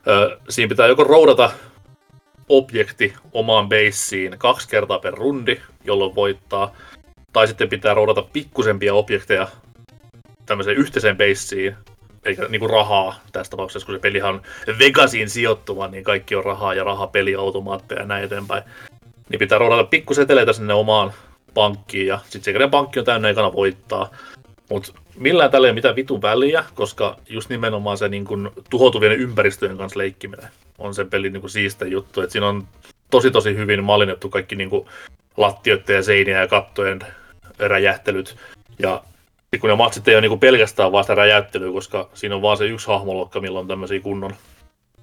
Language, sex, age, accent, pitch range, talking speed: Finnish, male, 30-49, native, 95-115 Hz, 165 wpm